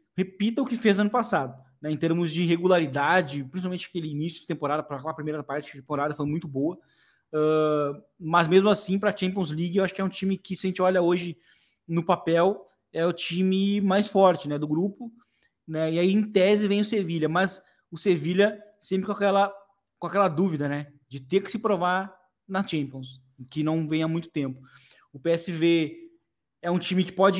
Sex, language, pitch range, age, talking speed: male, Portuguese, 150-195 Hz, 20-39, 200 wpm